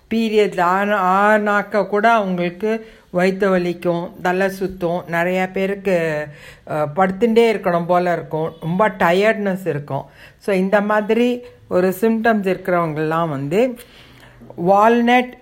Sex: female